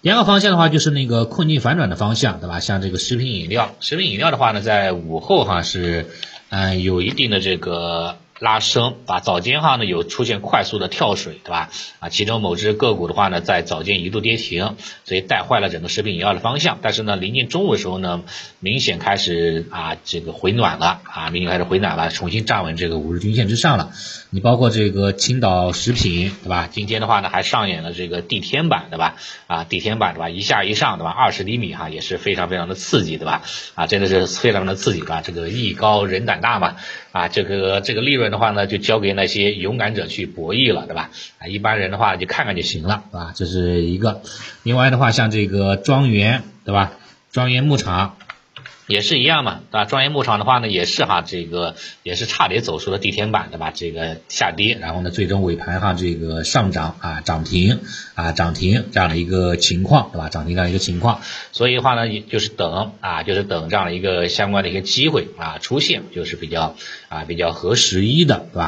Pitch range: 90-115 Hz